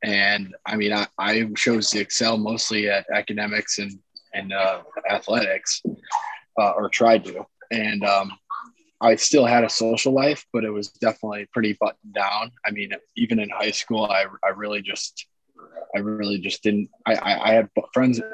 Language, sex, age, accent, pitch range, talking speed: English, male, 20-39, American, 100-115 Hz, 175 wpm